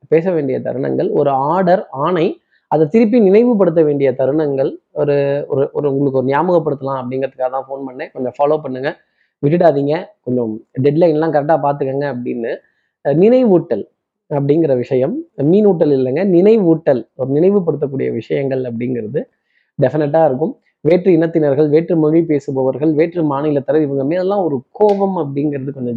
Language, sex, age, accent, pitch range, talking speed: Tamil, male, 20-39, native, 140-180 Hz, 60 wpm